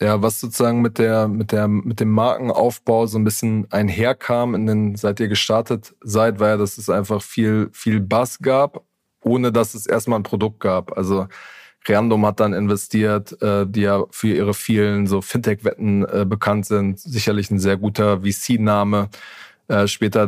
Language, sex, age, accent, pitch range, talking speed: German, male, 20-39, German, 105-115 Hz, 170 wpm